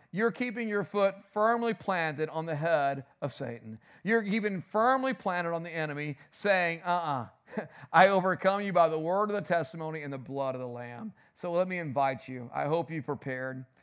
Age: 50-69